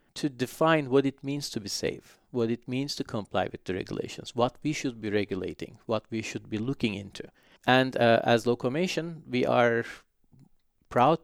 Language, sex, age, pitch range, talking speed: English, male, 40-59, 110-135 Hz, 180 wpm